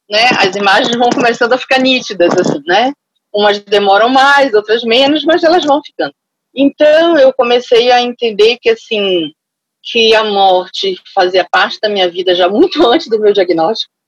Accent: Brazilian